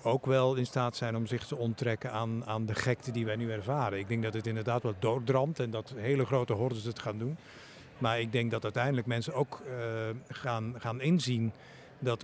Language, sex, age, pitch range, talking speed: Dutch, male, 50-69, 115-140 Hz, 215 wpm